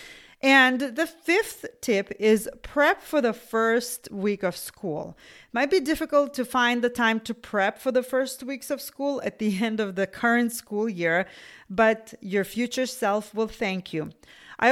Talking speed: 180 wpm